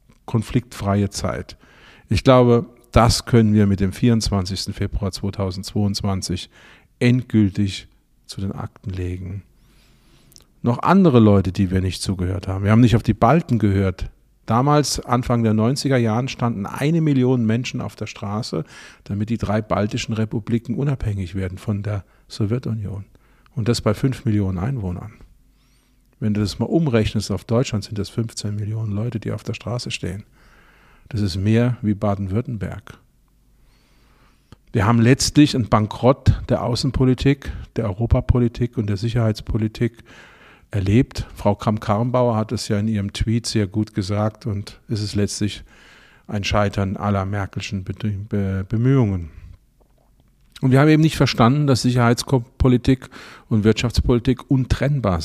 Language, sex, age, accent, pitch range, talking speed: German, male, 40-59, German, 100-120 Hz, 135 wpm